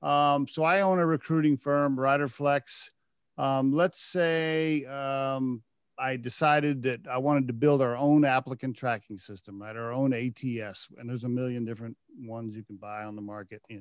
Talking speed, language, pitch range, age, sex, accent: 175 wpm, English, 130-160 Hz, 40-59, male, American